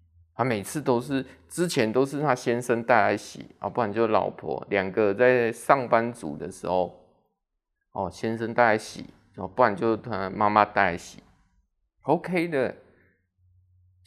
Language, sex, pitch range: Chinese, male, 105-155 Hz